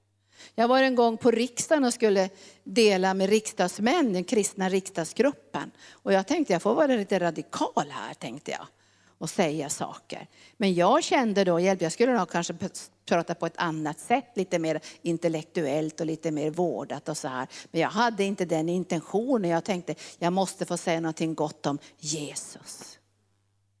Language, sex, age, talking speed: Swedish, female, 50-69, 175 wpm